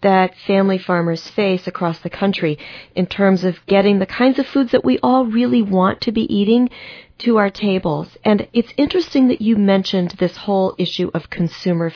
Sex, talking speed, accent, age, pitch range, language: female, 185 wpm, American, 40-59, 170-220 Hz, English